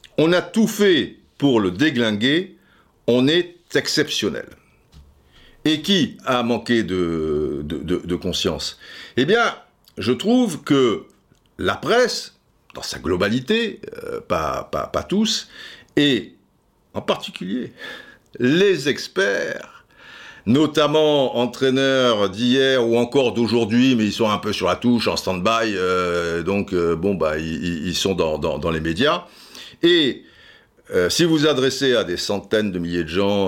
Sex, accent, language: male, French, French